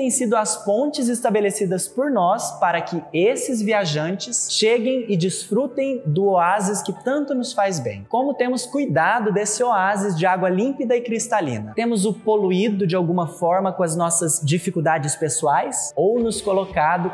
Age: 20-39